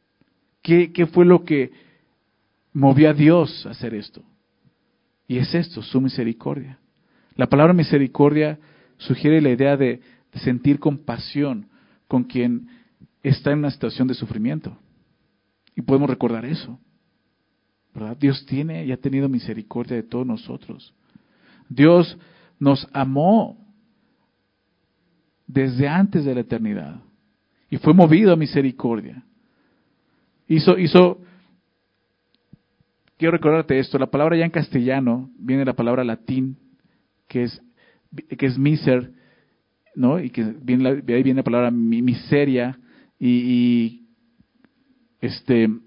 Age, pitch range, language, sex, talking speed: 50-69, 130-170 Hz, Spanish, male, 120 wpm